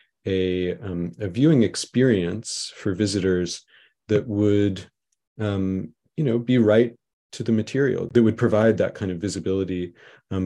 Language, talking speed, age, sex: English, 145 wpm, 30-49, male